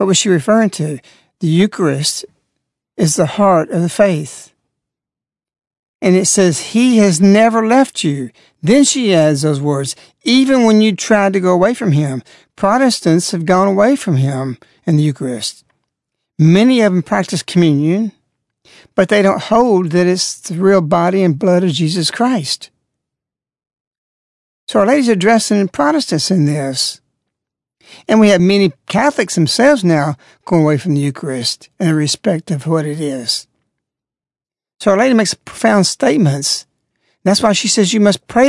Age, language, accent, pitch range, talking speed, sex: 60-79, English, American, 160-210 Hz, 155 wpm, male